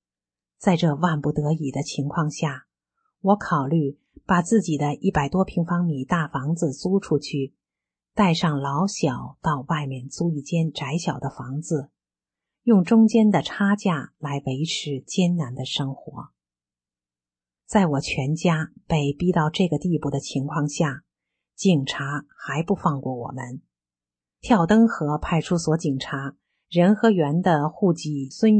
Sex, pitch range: female, 140-190 Hz